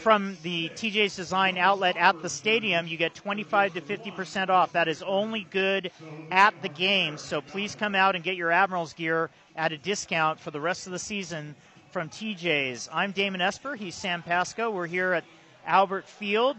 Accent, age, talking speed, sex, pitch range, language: American, 40-59, 190 wpm, male, 165-205 Hz, English